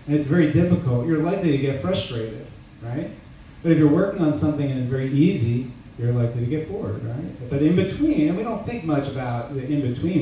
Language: English